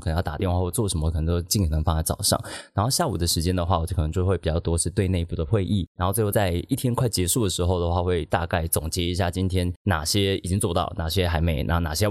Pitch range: 85-105 Hz